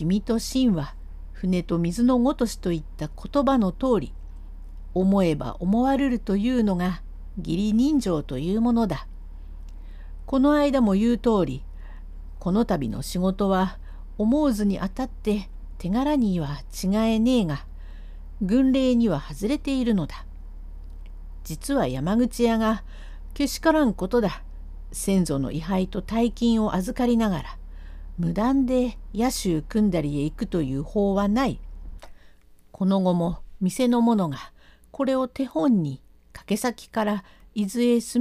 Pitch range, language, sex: 150-240 Hz, Japanese, female